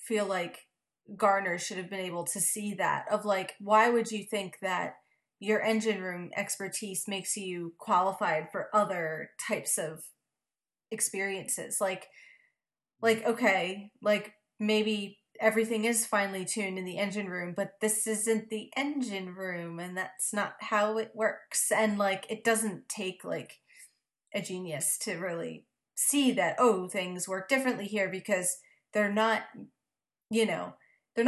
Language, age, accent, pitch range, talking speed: English, 30-49, American, 185-220 Hz, 150 wpm